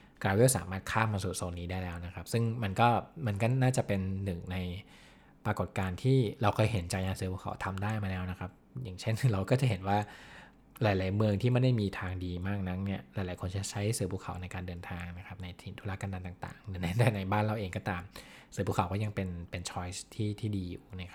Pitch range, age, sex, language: 90-110 Hz, 20-39, male, Thai